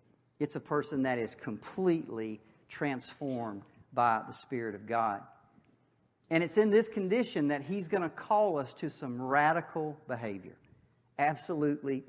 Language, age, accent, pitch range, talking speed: English, 50-69, American, 125-185 Hz, 140 wpm